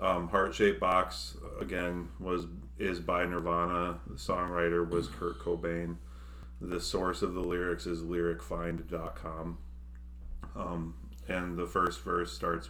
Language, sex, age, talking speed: English, male, 30-49, 125 wpm